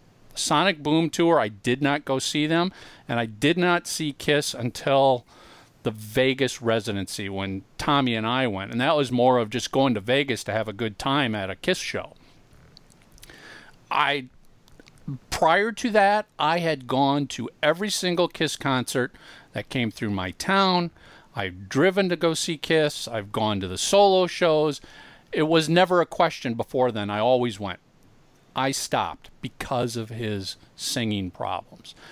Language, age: English, 40-59